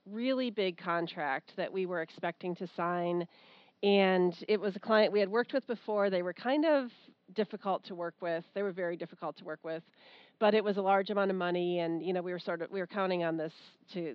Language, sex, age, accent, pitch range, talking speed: English, female, 40-59, American, 185-220 Hz, 235 wpm